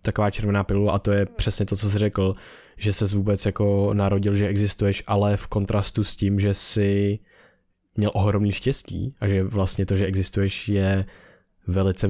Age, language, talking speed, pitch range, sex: 20-39, Czech, 180 wpm, 95-105 Hz, male